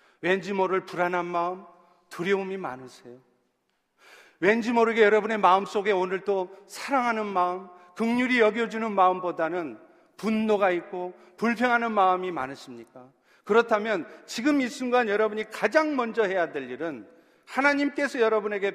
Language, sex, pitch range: Korean, male, 180-250 Hz